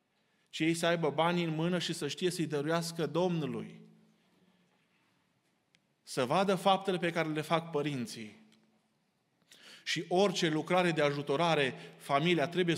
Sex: male